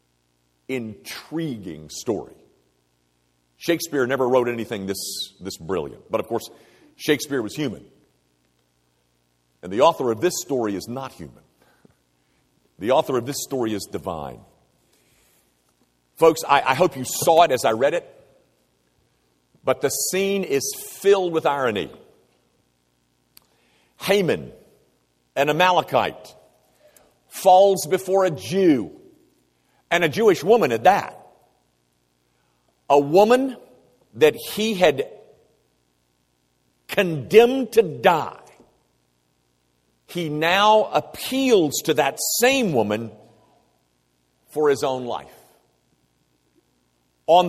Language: English